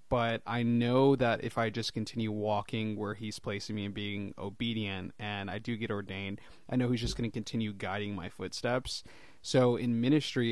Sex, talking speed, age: male, 195 wpm, 20-39